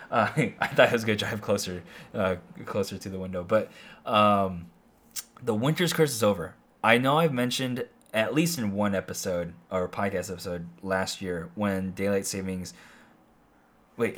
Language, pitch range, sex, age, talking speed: English, 95-160 Hz, male, 20-39, 160 wpm